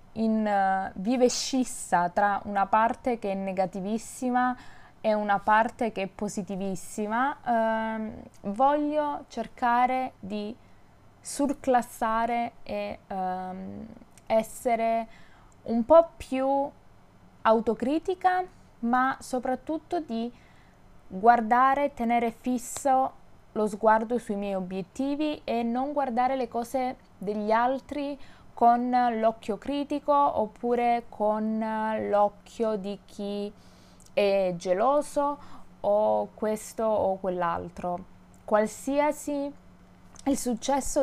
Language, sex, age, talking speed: Italian, female, 20-39, 90 wpm